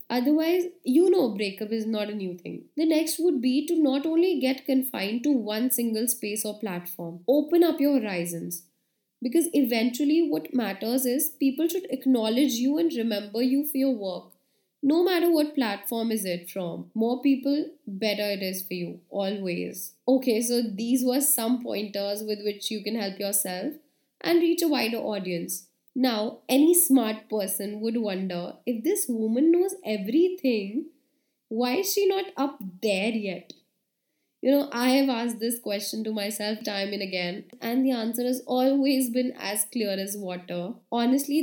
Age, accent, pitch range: 20-39, Indian, 205-270 Hz